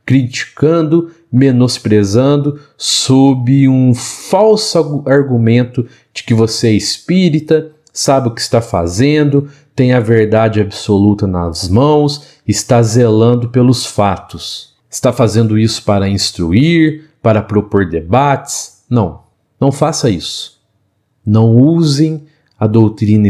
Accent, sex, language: Brazilian, male, Portuguese